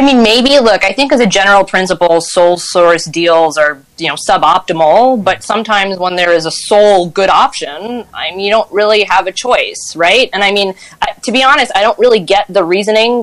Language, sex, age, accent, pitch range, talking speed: English, female, 20-39, American, 175-215 Hz, 215 wpm